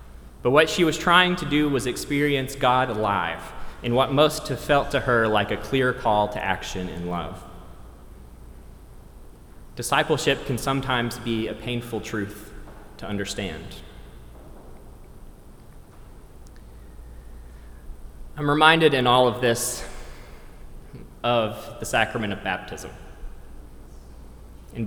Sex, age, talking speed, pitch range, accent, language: male, 20-39, 115 wpm, 95-135 Hz, American, English